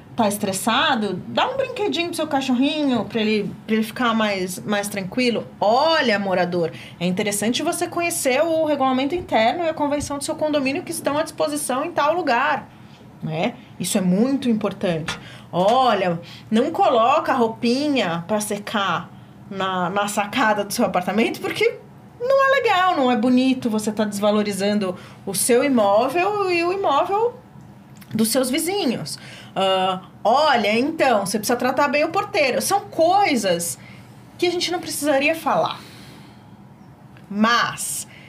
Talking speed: 145 wpm